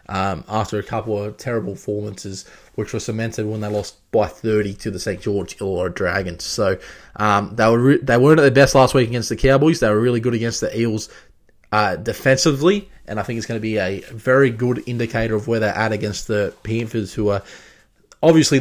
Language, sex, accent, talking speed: English, male, Australian, 220 wpm